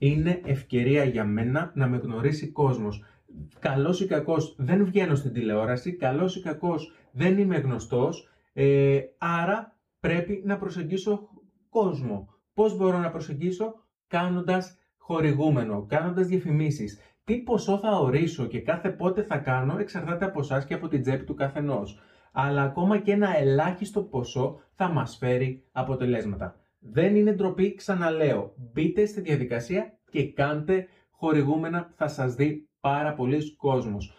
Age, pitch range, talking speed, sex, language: 30-49, 130-185 Hz, 140 wpm, male, Greek